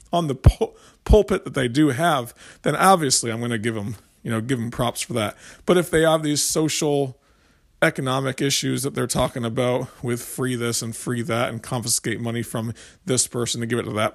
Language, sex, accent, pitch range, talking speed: English, male, American, 120-155 Hz, 195 wpm